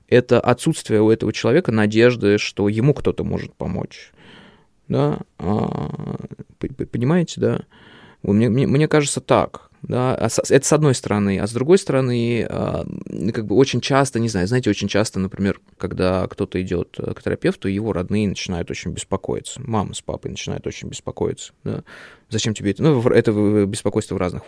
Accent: native